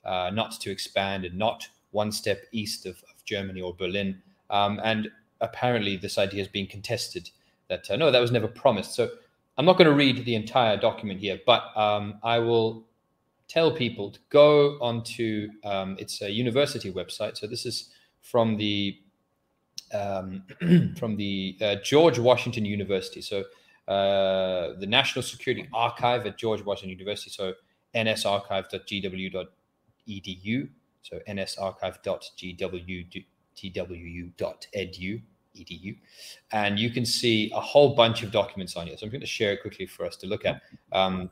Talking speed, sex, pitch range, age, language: 150 wpm, male, 95-120 Hz, 20-39, English